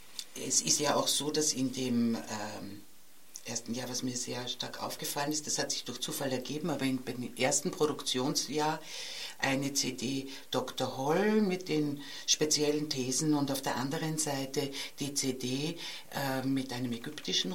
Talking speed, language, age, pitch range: 155 wpm, German, 60-79, 140-185 Hz